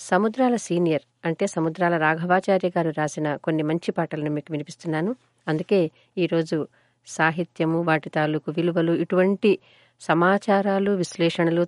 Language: Telugu